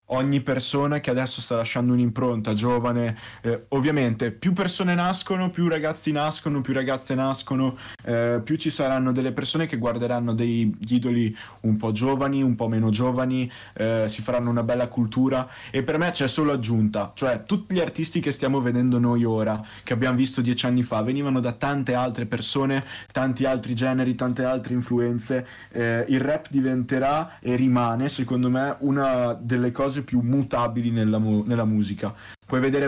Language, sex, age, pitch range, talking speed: Italian, male, 20-39, 115-135 Hz, 170 wpm